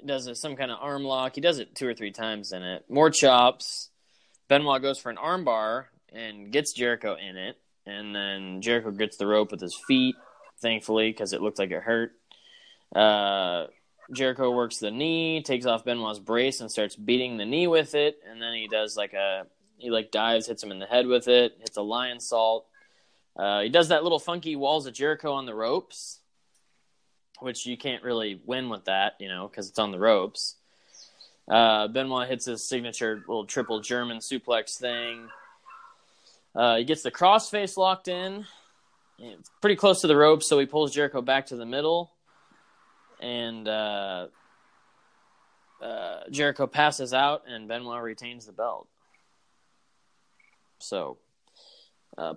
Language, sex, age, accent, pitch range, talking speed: English, male, 20-39, American, 110-145 Hz, 170 wpm